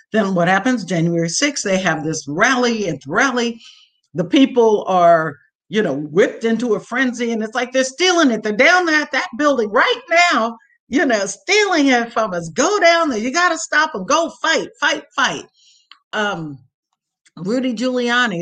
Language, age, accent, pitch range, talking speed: English, 50-69, American, 180-270 Hz, 175 wpm